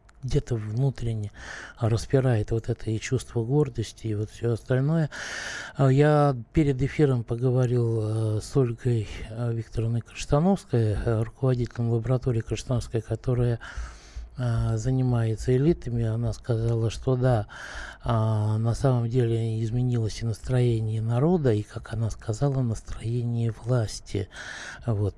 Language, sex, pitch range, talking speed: Russian, male, 110-130 Hz, 105 wpm